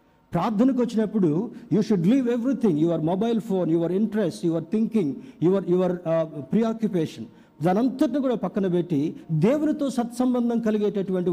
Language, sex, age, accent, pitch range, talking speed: Telugu, male, 50-69, native, 160-220 Hz, 130 wpm